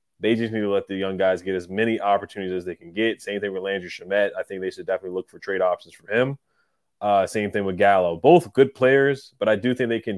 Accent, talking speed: American, 270 wpm